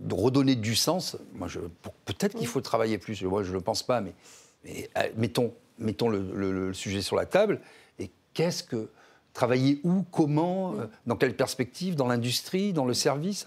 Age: 50-69